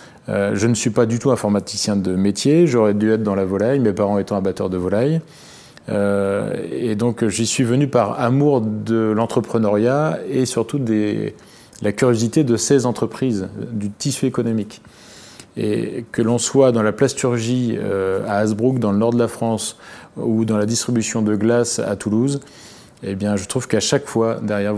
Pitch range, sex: 100-120 Hz, male